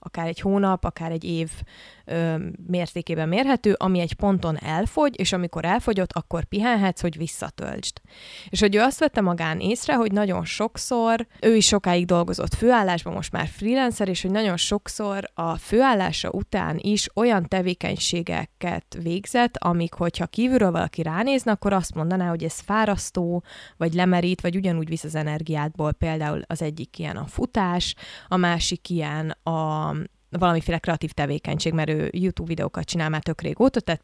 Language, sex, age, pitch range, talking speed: Hungarian, female, 20-39, 165-195 Hz, 155 wpm